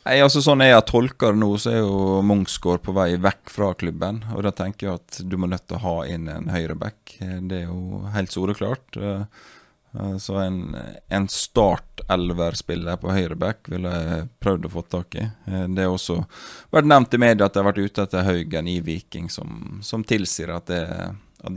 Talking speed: 180 wpm